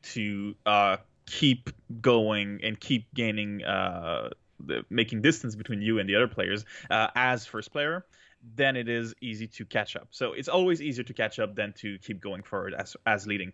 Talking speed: 185 wpm